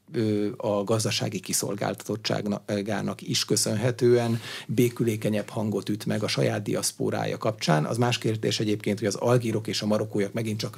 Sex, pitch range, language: male, 105-125 Hz, Hungarian